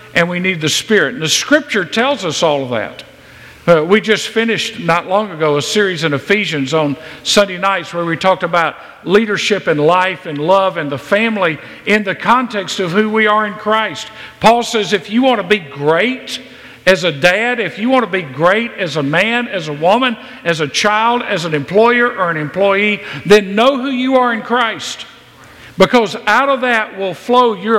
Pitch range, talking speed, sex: 165-225 Hz, 205 wpm, male